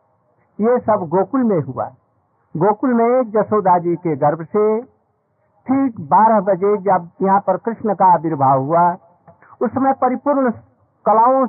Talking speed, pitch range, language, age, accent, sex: 130 wpm, 150-225 Hz, Hindi, 60-79, native, male